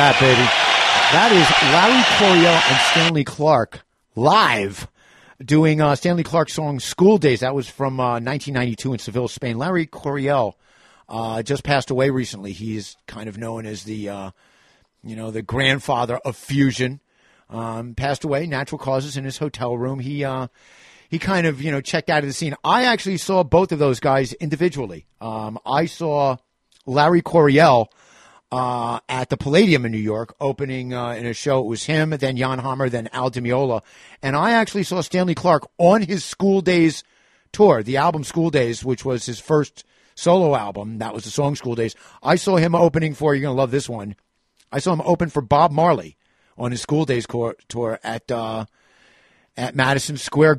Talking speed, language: 185 wpm, English